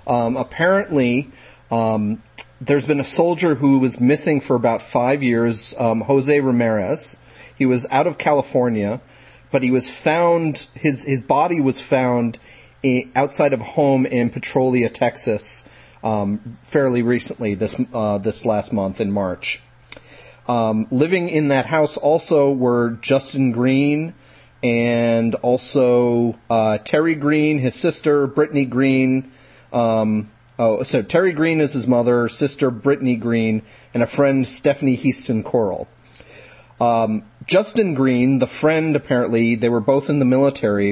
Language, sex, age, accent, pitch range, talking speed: English, male, 30-49, American, 115-140 Hz, 135 wpm